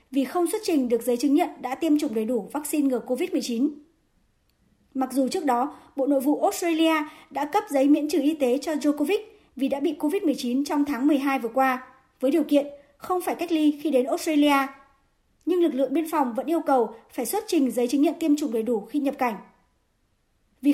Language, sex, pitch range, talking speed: Vietnamese, male, 260-320 Hz, 215 wpm